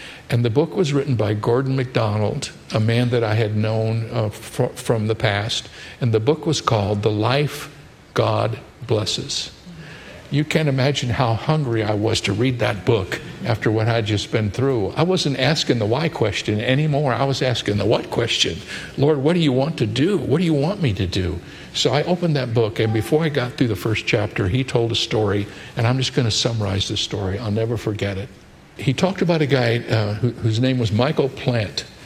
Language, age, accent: English, 60-79, American